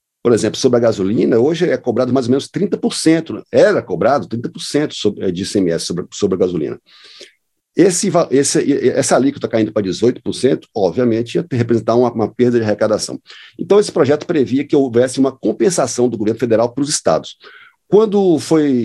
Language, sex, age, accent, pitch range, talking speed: Portuguese, male, 50-69, Brazilian, 110-145 Hz, 165 wpm